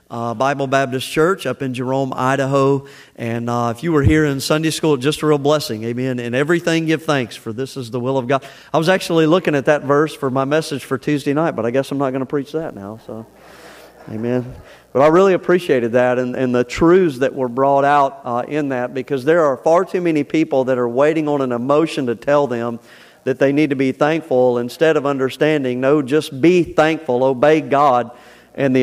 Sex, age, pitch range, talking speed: male, 40-59, 130-160 Hz, 225 wpm